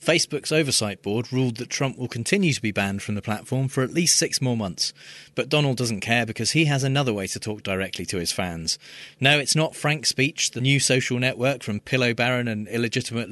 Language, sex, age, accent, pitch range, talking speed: English, male, 30-49, British, 110-140 Hz, 220 wpm